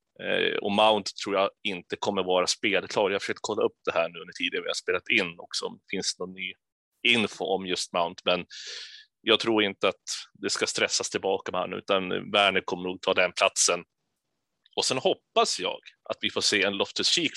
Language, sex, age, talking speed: Swedish, male, 30-49, 205 wpm